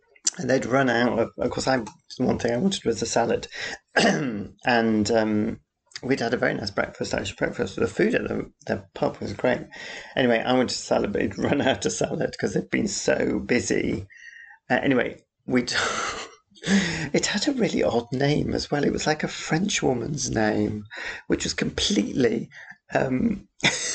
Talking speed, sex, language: 180 wpm, male, English